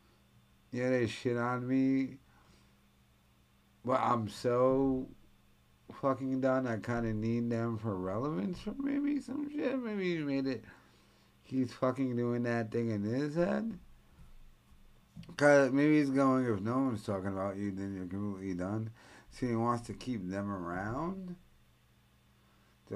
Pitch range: 95-135 Hz